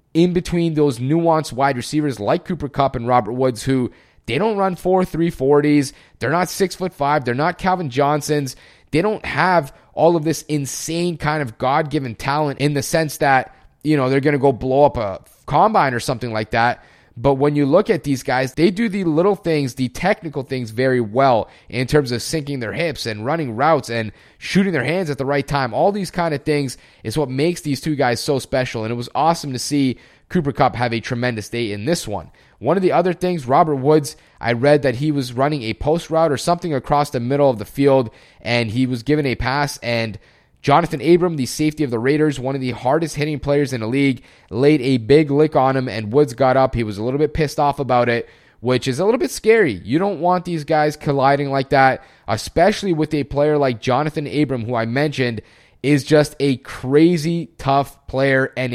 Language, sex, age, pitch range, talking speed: English, male, 30-49, 130-155 Hz, 220 wpm